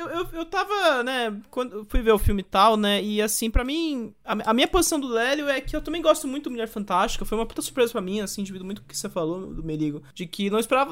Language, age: English, 20-39